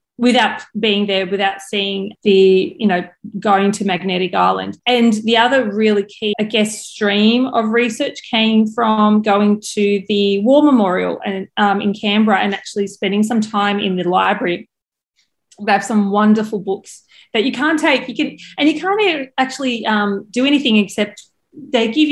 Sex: female